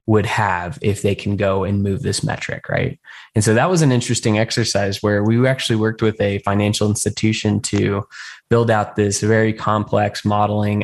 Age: 10-29